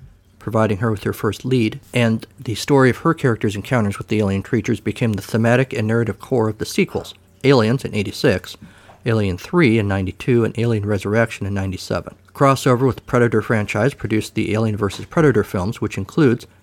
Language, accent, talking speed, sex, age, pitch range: English, American, 185 wpm, male, 50-69, 100-120 Hz